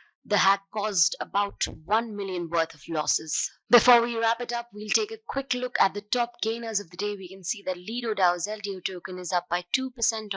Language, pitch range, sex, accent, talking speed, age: English, 175-215 Hz, female, Indian, 220 wpm, 20-39